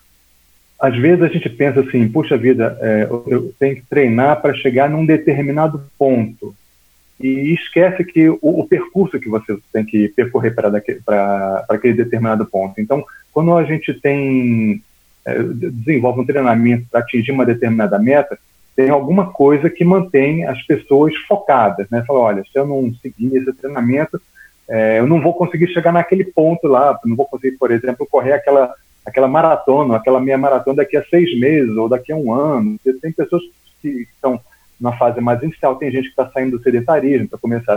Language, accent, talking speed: Portuguese, Brazilian, 175 wpm